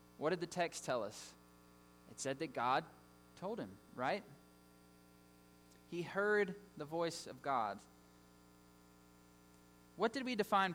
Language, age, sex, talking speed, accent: English, 20-39, male, 130 wpm, American